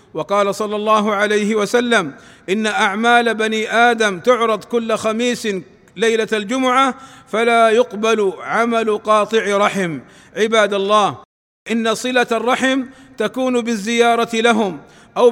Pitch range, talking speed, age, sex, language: 215-235 Hz, 110 wpm, 50-69, male, Arabic